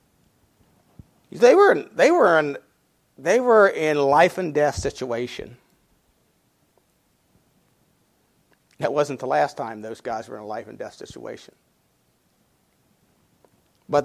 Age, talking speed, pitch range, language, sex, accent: 50-69, 105 wpm, 145-210 Hz, English, male, American